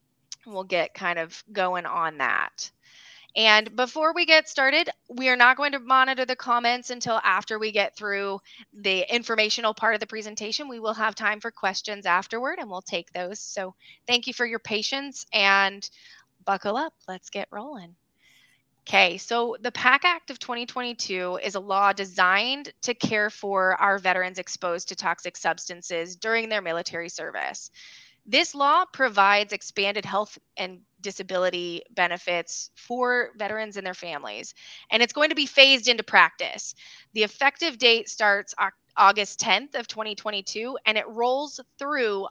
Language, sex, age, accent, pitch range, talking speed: English, female, 20-39, American, 190-245 Hz, 155 wpm